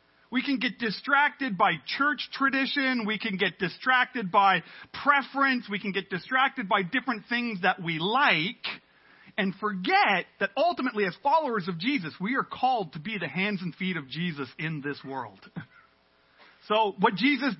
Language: English